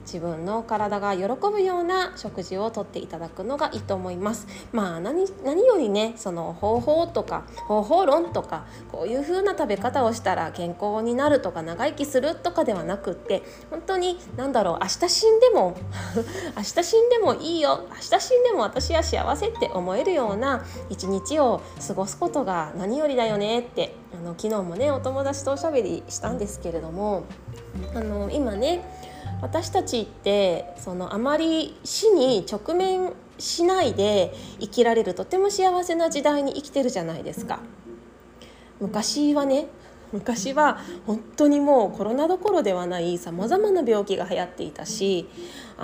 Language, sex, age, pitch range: Japanese, female, 20-39, 190-315 Hz